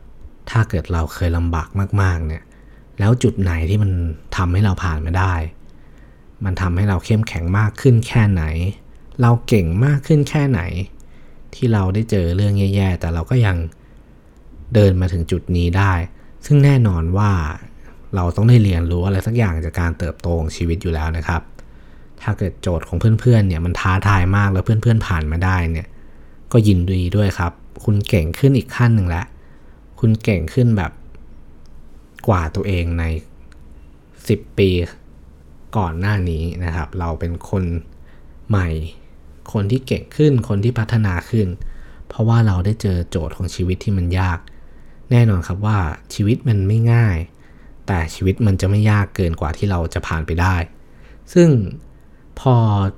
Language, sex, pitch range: Thai, male, 80-105 Hz